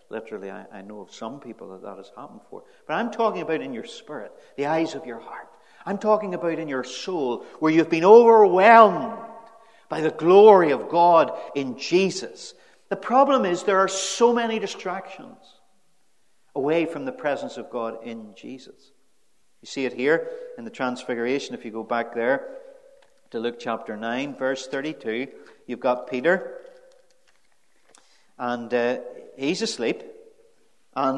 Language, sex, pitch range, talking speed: English, male, 155-260 Hz, 160 wpm